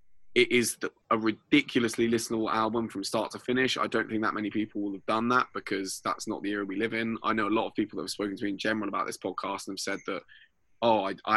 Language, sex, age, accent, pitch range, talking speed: English, male, 20-39, British, 100-110 Hz, 270 wpm